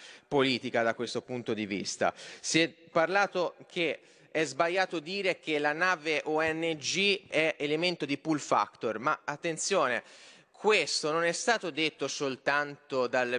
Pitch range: 120-160 Hz